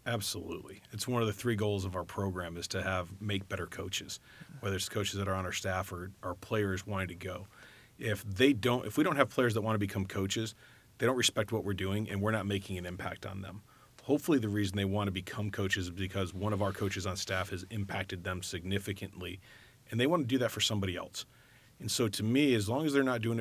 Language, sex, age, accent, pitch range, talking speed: English, male, 30-49, American, 95-115 Hz, 245 wpm